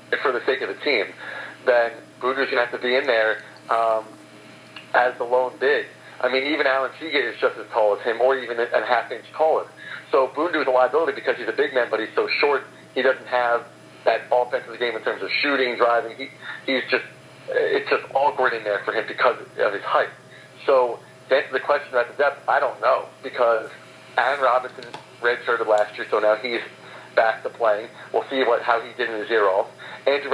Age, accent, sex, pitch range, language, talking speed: 50-69, American, male, 120-135 Hz, English, 220 wpm